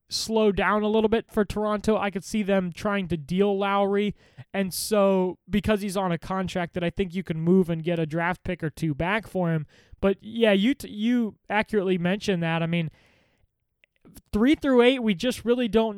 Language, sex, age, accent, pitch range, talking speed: English, male, 20-39, American, 180-210 Hz, 205 wpm